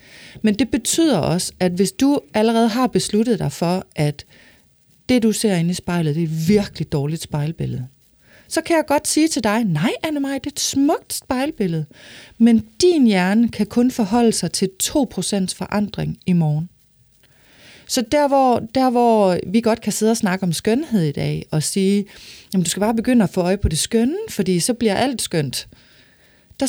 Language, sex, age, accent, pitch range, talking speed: Danish, female, 30-49, native, 175-235 Hz, 190 wpm